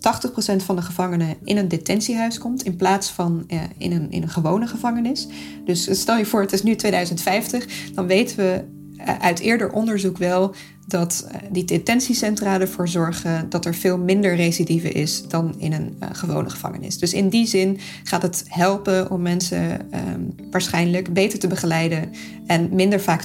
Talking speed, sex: 160 wpm, female